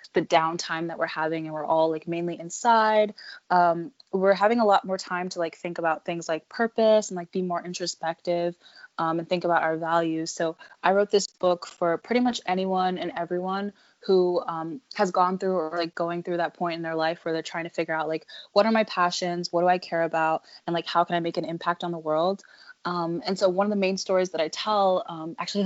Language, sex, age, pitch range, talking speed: English, female, 20-39, 165-195 Hz, 235 wpm